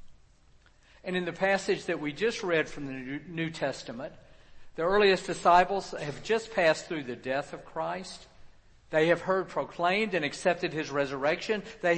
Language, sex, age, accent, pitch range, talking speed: English, male, 50-69, American, 145-195 Hz, 160 wpm